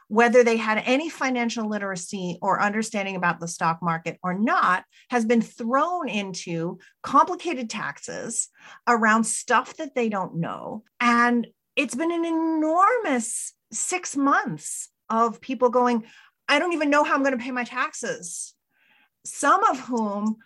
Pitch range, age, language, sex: 185-260 Hz, 30-49, English, female